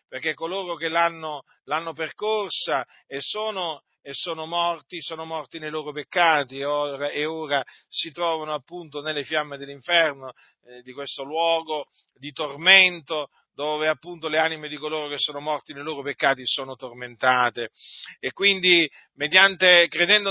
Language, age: Italian, 40-59